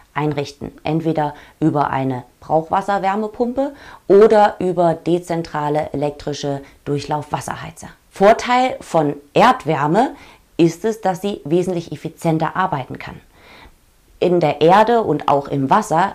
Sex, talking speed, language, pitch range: female, 105 wpm, German, 150-190 Hz